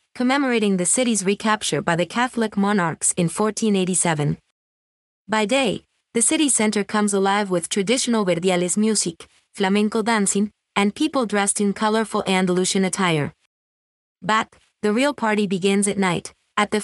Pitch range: 180-220 Hz